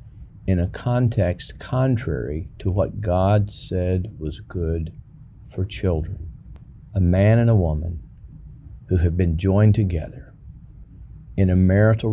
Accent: American